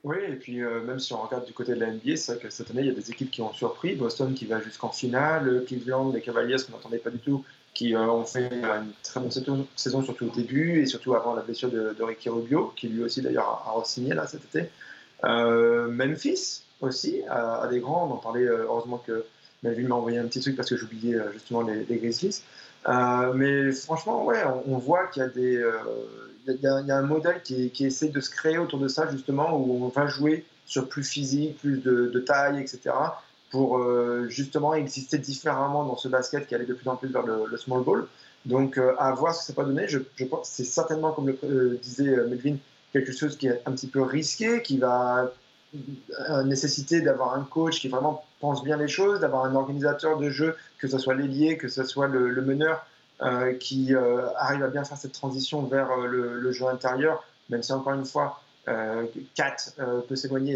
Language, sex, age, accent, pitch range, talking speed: French, male, 20-39, French, 125-145 Hz, 230 wpm